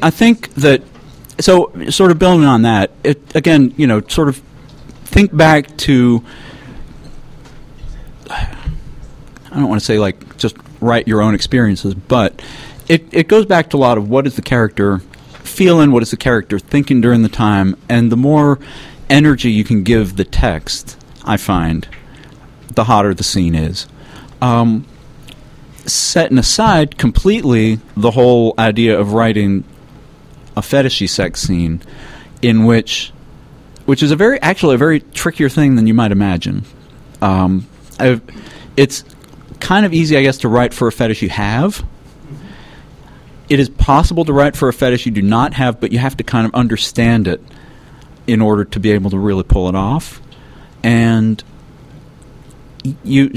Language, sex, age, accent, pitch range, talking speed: English, male, 40-59, American, 110-145 Hz, 160 wpm